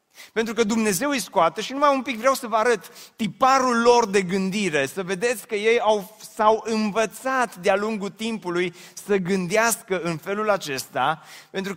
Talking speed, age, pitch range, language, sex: 170 wpm, 30-49, 175-230 Hz, Romanian, male